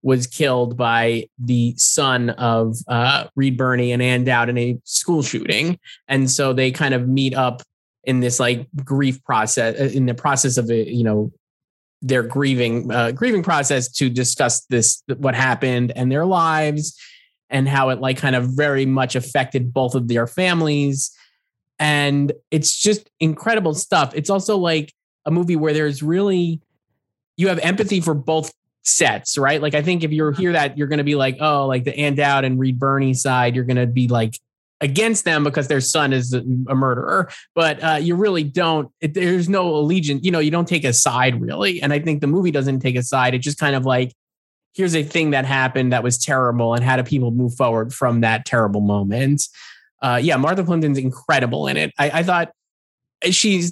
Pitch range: 125-155 Hz